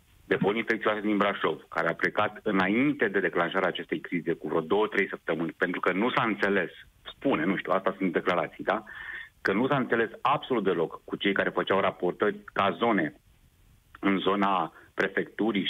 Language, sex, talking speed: Romanian, male, 170 wpm